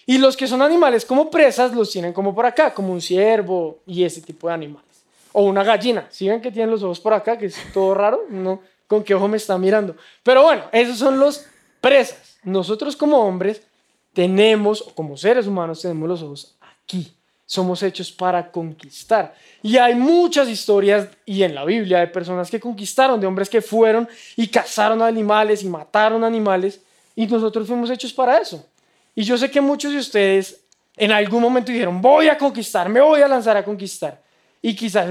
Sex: male